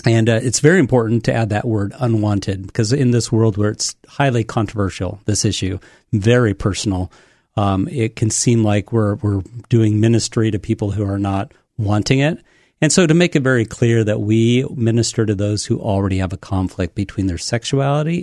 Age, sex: 40-59, male